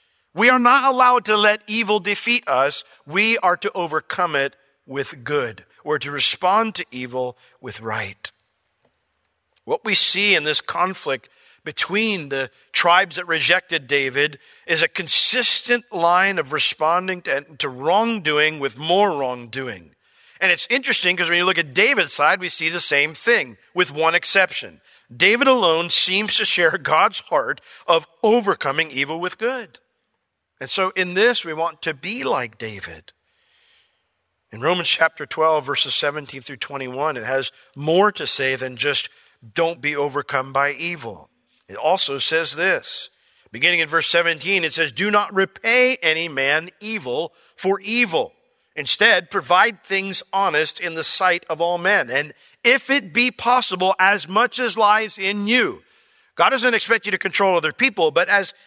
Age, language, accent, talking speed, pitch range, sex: 50-69, English, American, 160 wpm, 145-210 Hz, male